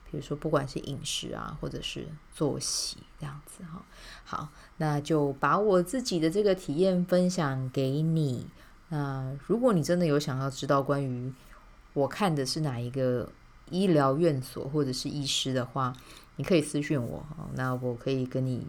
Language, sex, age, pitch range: Chinese, female, 20-39, 135-175 Hz